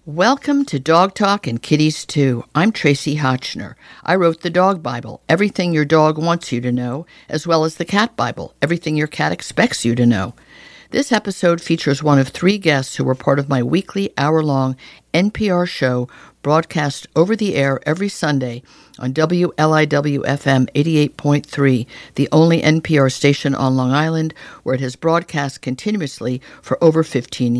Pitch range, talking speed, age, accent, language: 135-170 Hz, 165 wpm, 60-79, American, English